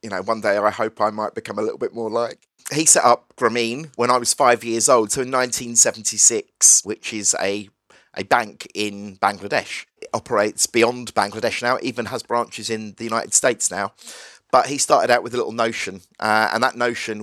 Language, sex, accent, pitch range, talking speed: English, male, British, 110-120 Hz, 210 wpm